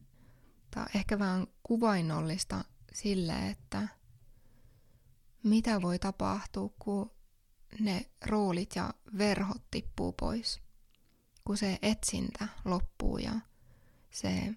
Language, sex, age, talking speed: English, female, 20-39, 85 wpm